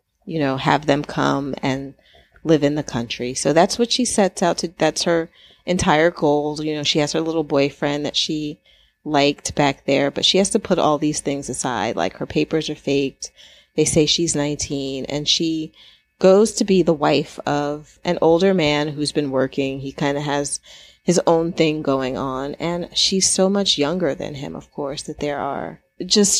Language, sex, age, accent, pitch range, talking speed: English, female, 30-49, American, 140-175 Hz, 200 wpm